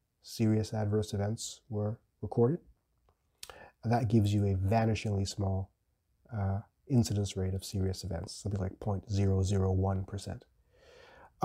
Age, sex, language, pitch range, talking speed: 30-49, male, English, 100-120 Hz, 105 wpm